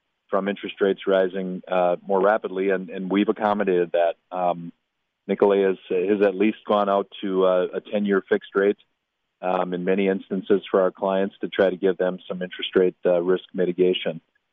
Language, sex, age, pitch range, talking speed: English, male, 30-49, 90-100 Hz, 180 wpm